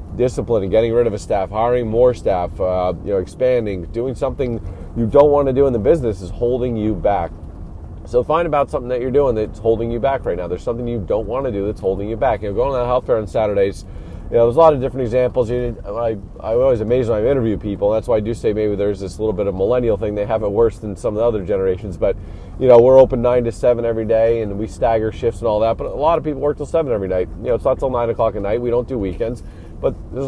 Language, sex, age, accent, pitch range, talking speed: English, male, 30-49, American, 100-125 Hz, 285 wpm